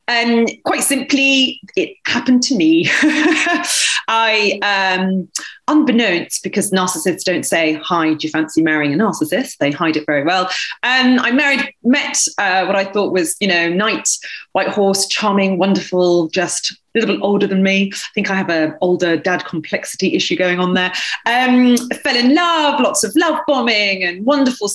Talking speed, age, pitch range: 175 wpm, 30-49, 175-250 Hz